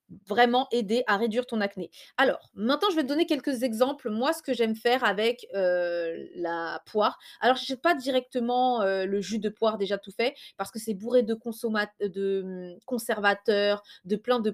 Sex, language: female, French